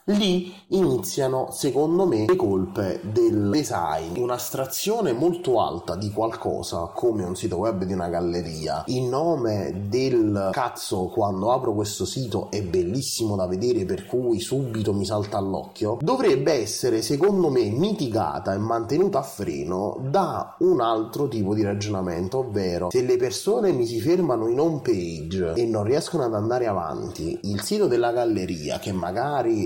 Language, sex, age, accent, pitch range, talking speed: Italian, male, 30-49, native, 105-140 Hz, 155 wpm